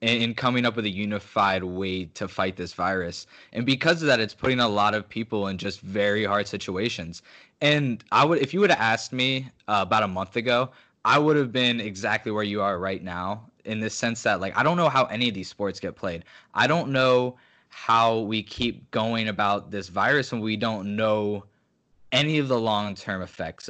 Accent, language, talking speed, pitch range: American, English, 215 wpm, 100-125 Hz